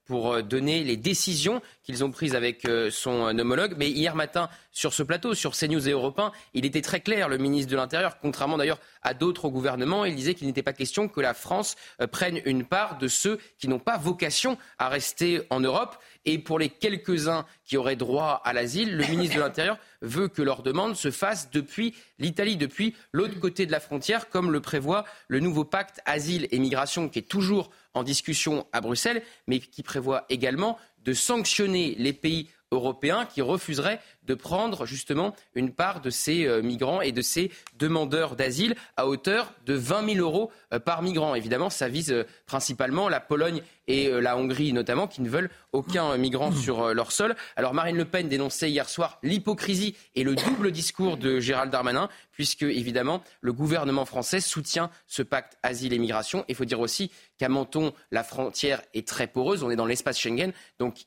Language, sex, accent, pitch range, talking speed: French, male, French, 130-185 Hz, 190 wpm